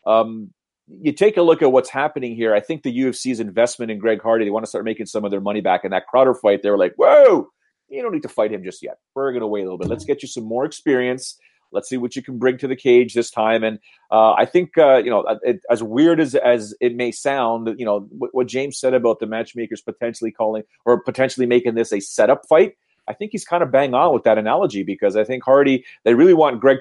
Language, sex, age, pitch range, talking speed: English, male, 40-59, 115-135 Hz, 265 wpm